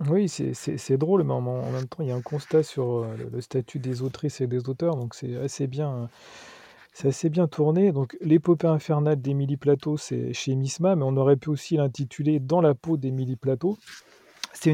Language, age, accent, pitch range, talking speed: French, 40-59, French, 125-155 Hz, 210 wpm